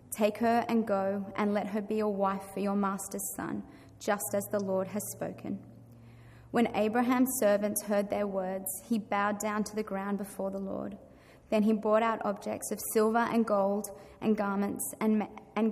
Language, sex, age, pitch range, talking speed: English, female, 20-39, 200-220 Hz, 185 wpm